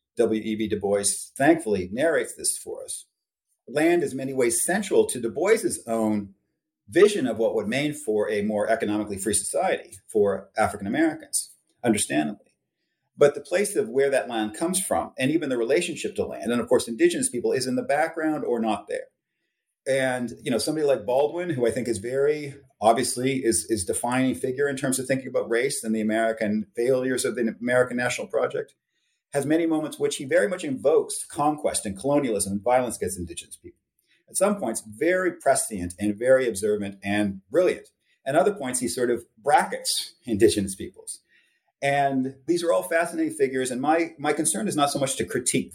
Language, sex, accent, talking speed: English, male, American, 185 wpm